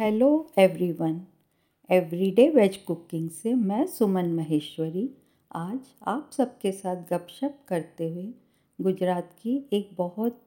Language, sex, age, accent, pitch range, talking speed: Hindi, female, 50-69, native, 170-225 Hz, 115 wpm